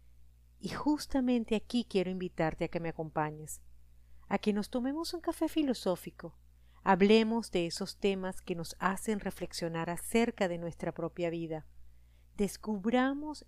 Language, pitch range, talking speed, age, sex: Spanish, 155-220 Hz, 135 wpm, 40-59, female